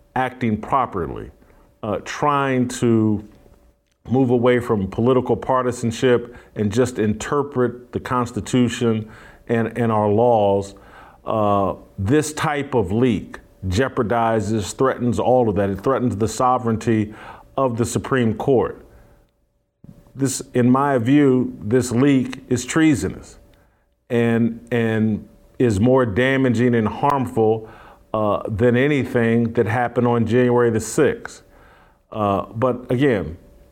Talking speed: 115 wpm